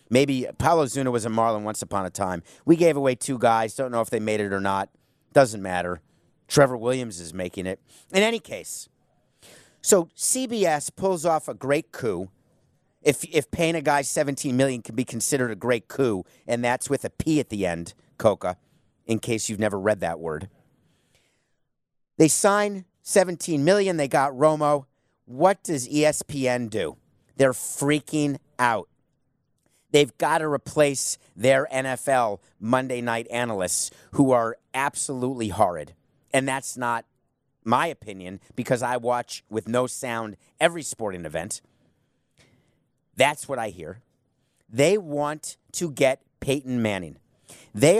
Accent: American